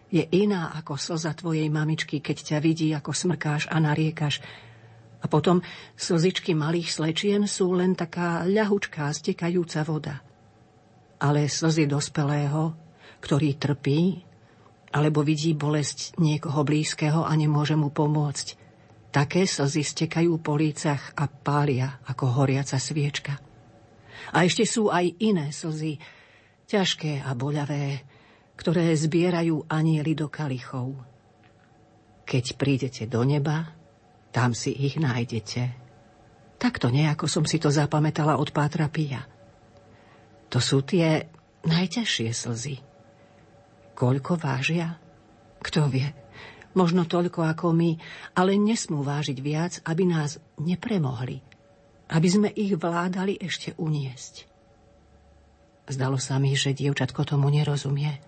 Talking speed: 115 wpm